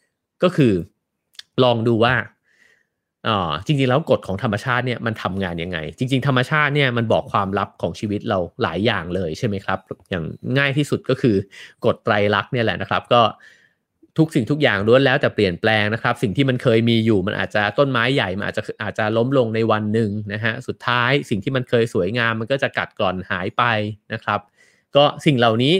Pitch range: 105-130 Hz